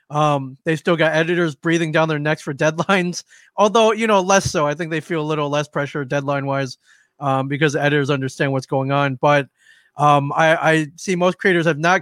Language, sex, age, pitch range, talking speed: English, male, 30-49, 145-170 Hz, 210 wpm